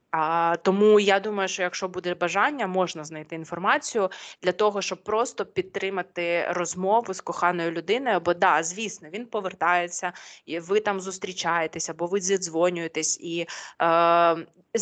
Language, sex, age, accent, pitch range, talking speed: Ukrainian, female, 20-39, native, 175-210 Hz, 140 wpm